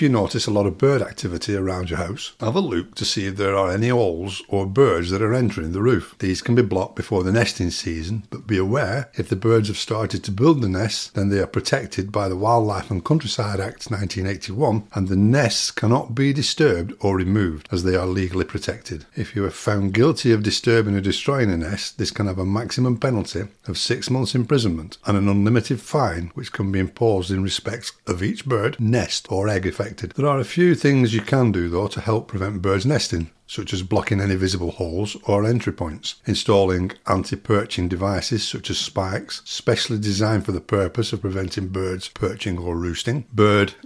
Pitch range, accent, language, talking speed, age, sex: 95-120 Hz, British, English, 205 wpm, 60-79, male